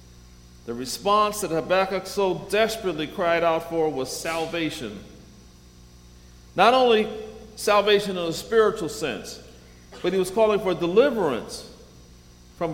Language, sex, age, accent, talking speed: English, male, 50-69, American, 120 wpm